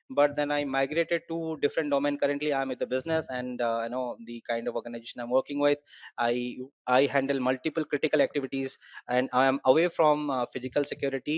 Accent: Indian